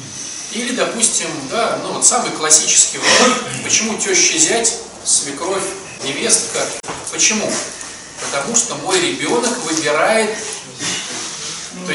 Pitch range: 195-270 Hz